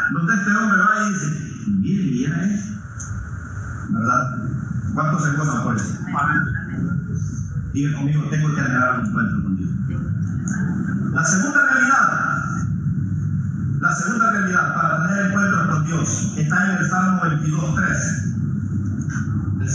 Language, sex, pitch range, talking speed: Spanish, male, 125-175 Hz, 135 wpm